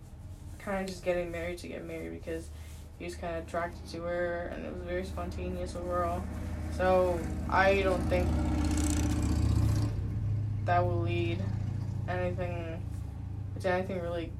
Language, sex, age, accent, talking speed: English, female, 20-39, American, 140 wpm